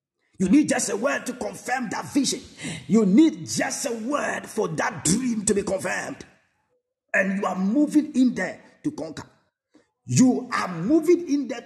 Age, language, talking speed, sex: 50-69, English, 170 wpm, male